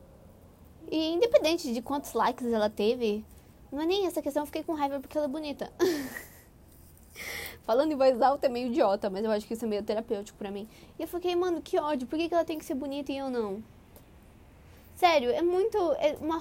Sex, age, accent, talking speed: female, 20-39, Brazilian, 210 wpm